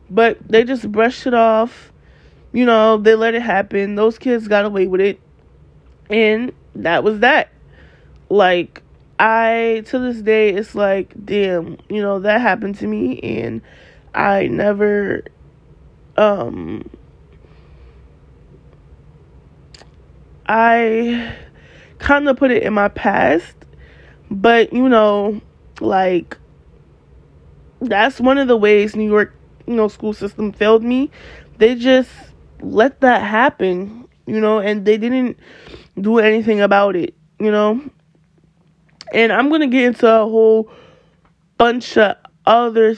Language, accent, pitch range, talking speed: English, American, 200-230 Hz, 130 wpm